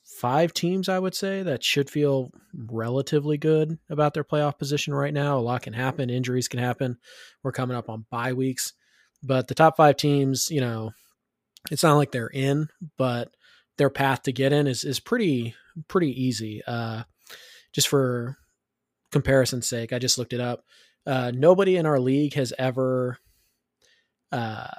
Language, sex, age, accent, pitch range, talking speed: English, male, 20-39, American, 125-145 Hz, 170 wpm